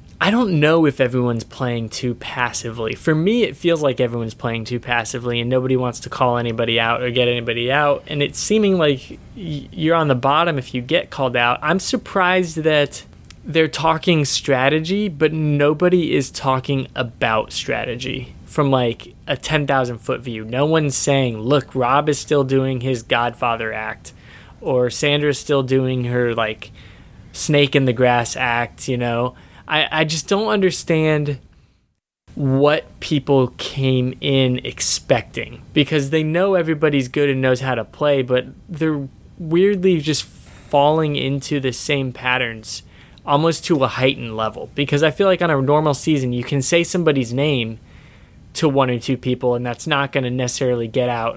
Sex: male